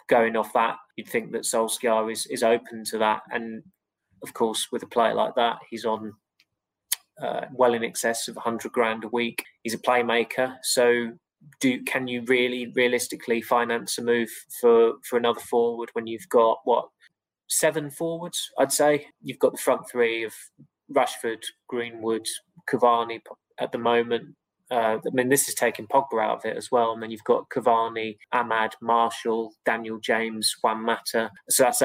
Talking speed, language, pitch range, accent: 175 wpm, English, 110-125 Hz, British